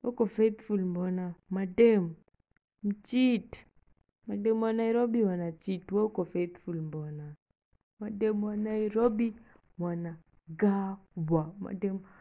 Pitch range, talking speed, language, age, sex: 175-225 Hz, 100 wpm, English, 20-39, female